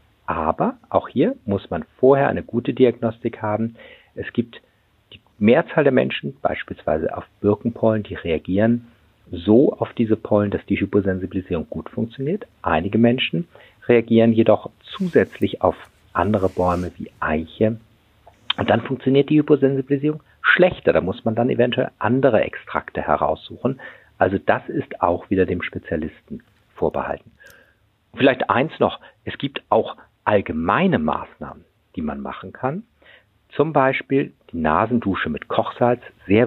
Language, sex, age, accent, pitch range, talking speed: German, male, 50-69, German, 95-120 Hz, 135 wpm